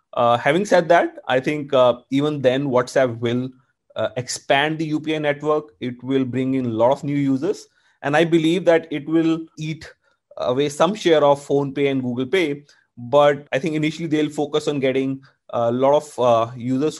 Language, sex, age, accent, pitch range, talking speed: English, male, 30-49, Indian, 130-155 Hz, 185 wpm